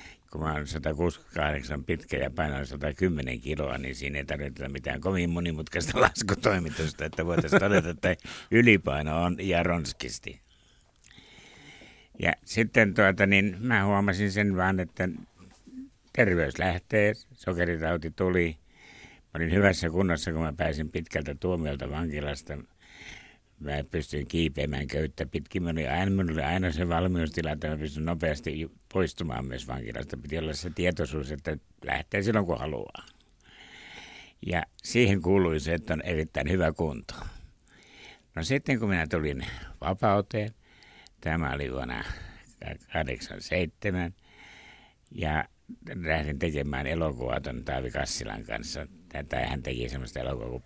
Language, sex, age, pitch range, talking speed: Finnish, male, 60-79, 75-90 Hz, 125 wpm